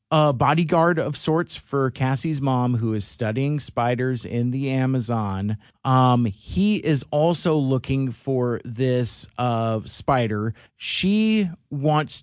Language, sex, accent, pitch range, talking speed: English, male, American, 120-145 Hz, 125 wpm